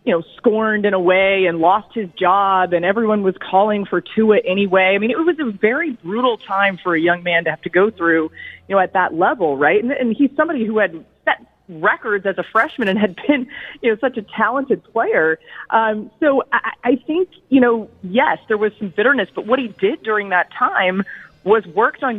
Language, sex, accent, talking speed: English, female, American, 220 wpm